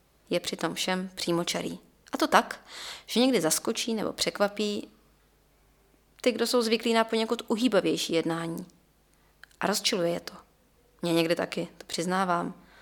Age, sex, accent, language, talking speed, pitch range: 20-39, female, native, Czech, 135 wpm, 170-210 Hz